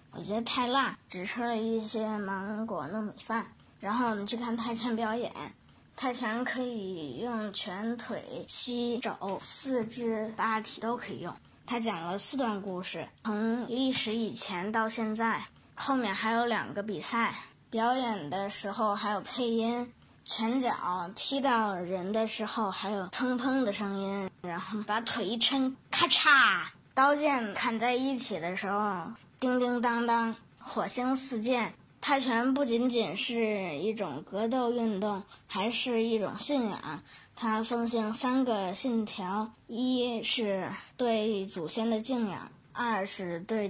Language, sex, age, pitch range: Chinese, female, 20-39, 200-235 Hz